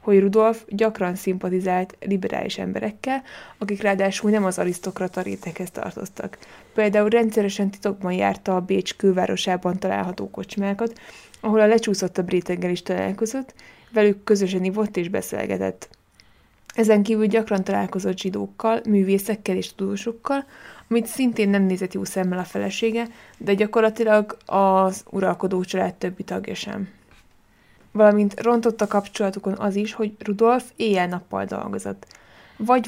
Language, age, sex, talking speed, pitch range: Hungarian, 20-39, female, 125 wpm, 185-220 Hz